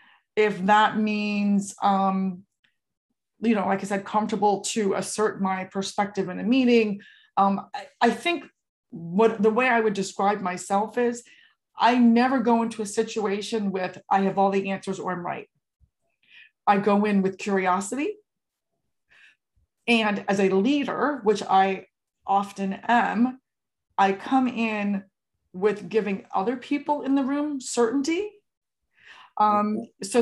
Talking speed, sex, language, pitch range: 140 wpm, female, English, 195-245 Hz